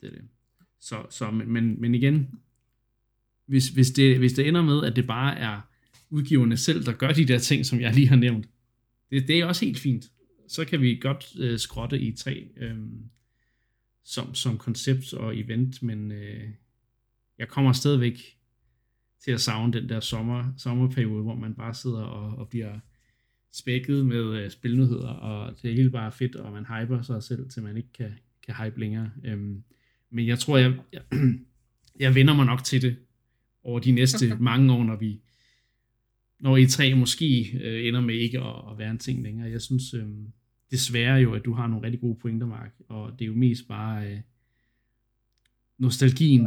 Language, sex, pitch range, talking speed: Danish, male, 115-130 Hz, 185 wpm